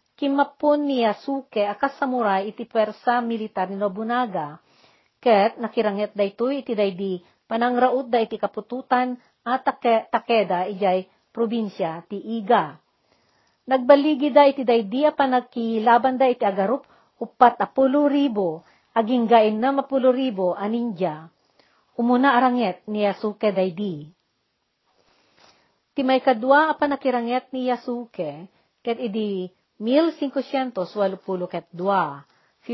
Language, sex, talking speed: Filipino, female, 100 wpm